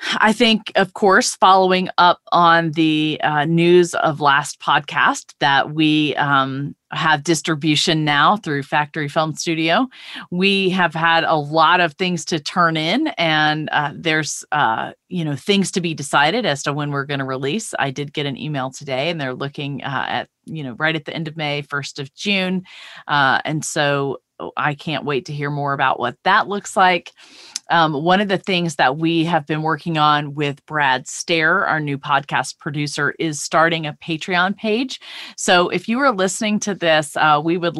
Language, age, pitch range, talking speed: English, 30-49, 145-175 Hz, 190 wpm